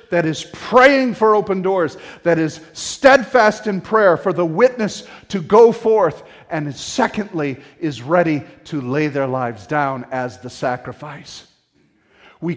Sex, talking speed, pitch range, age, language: male, 145 wpm, 130-170 Hz, 50-69, English